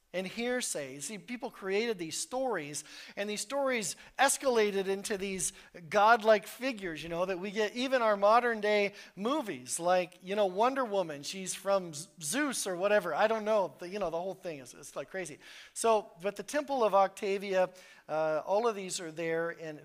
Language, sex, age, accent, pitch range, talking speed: English, male, 40-59, American, 170-215 Hz, 185 wpm